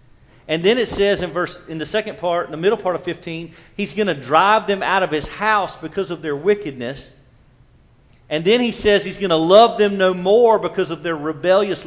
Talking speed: 220 wpm